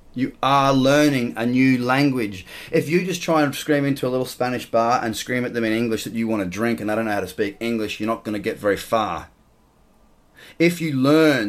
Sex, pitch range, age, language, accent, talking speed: male, 115-160 Hz, 30-49, English, Australian, 230 wpm